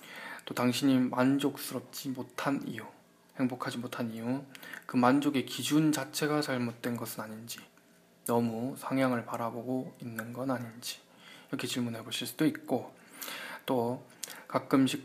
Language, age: Korean, 20-39